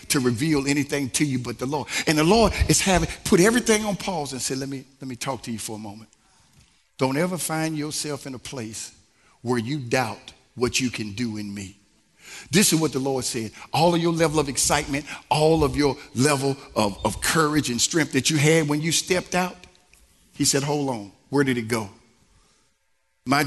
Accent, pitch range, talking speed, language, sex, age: American, 115-155 Hz, 210 wpm, English, male, 50-69